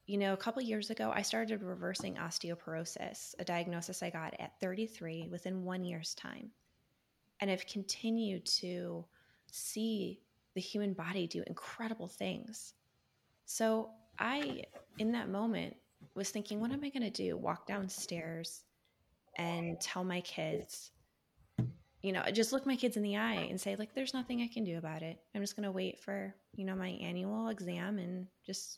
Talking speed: 170 wpm